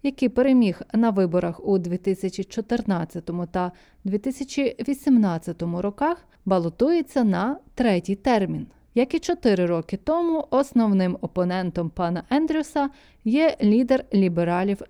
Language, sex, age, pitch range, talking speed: Ukrainian, female, 30-49, 185-255 Hz, 100 wpm